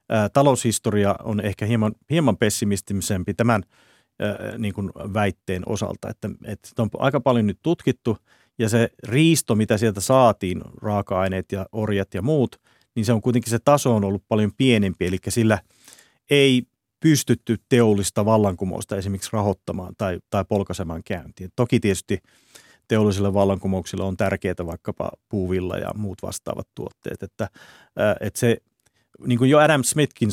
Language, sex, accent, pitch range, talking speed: Finnish, male, native, 100-115 Hz, 145 wpm